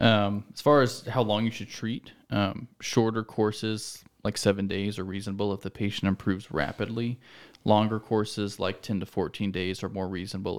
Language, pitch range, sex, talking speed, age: English, 100-110 Hz, male, 180 wpm, 20-39